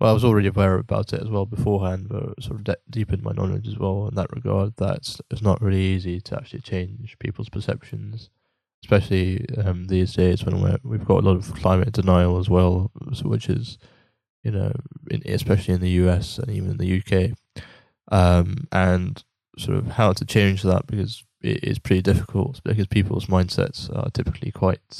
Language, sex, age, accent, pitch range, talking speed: English, male, 10-29, British, 95-115 Hz, 195 wpm